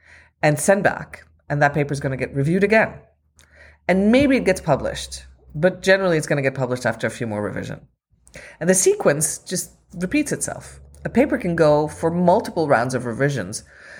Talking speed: 190 wpm